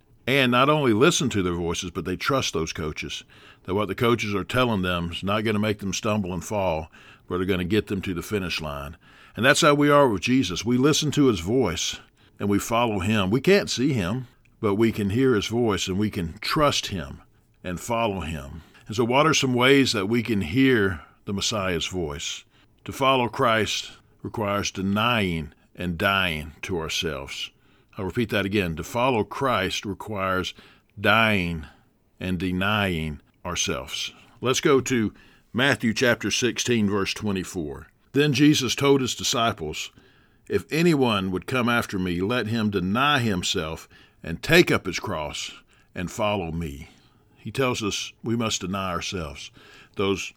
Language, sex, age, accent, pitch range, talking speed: English, male, 50-69, American, 95-120 Hz, 175 wpm